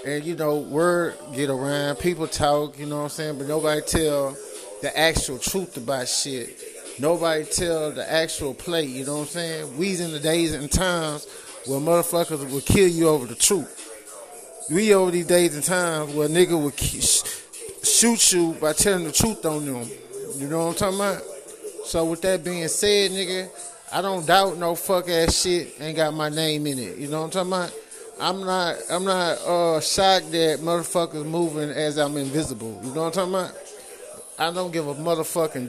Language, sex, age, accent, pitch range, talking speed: English, male, 20-39, American, 145-180 Hz, 195 wpm